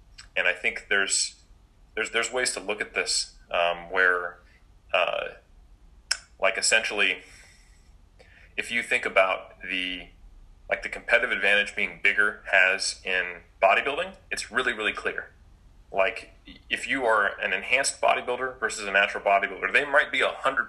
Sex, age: male, 30-49